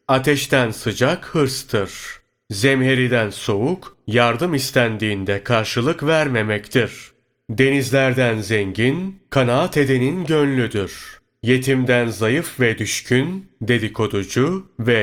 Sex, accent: male, native